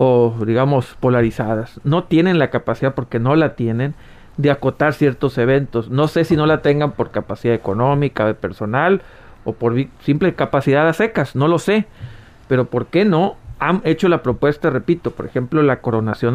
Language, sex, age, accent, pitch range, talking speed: Spanish, male, 40-59, Mexican, 120-155 Hz, 175 wpm